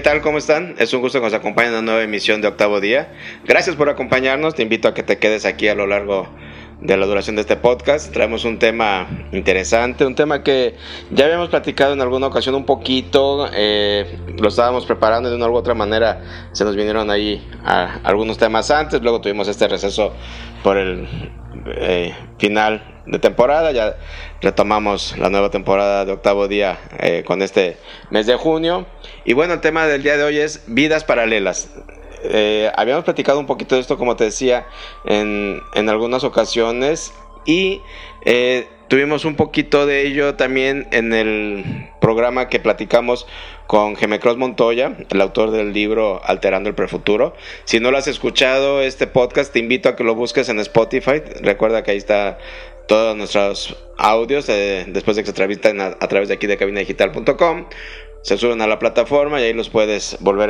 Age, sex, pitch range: 30-49, male, 105-140 Hz